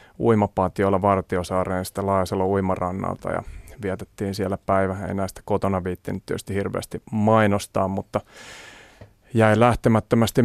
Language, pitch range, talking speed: Finnish, 95-110 Hz, 115 wpm